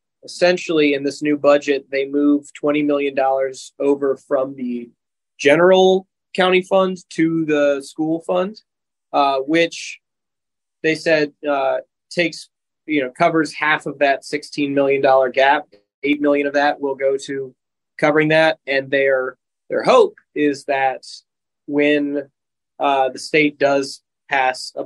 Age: 20-39